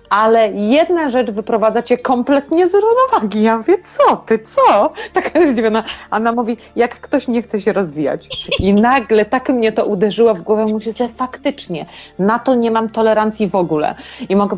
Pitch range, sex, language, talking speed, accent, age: 205-250 Hz, female, Polish, 175 wpm, native, 30-49